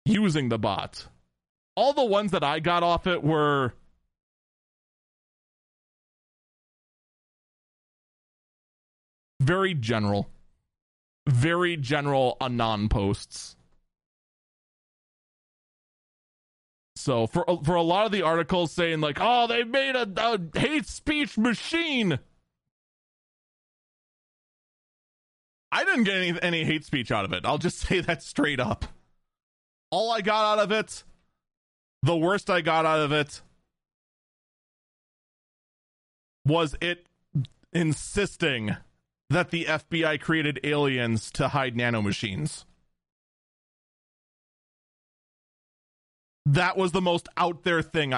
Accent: American